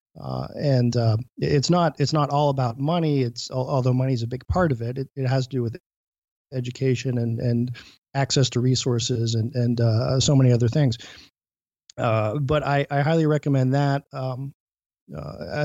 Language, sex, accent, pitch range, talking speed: English, male, American, 120-140 Hz, 175 wpm